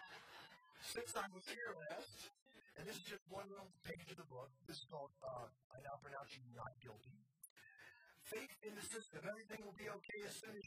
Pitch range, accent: 120-185 Hz, American